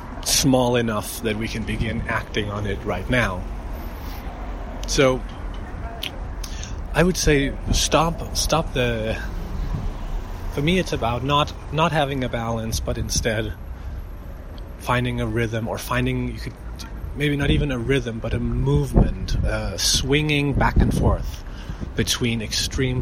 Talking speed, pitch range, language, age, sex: 135 wpm, 90-120 Hz, English, 30-49, male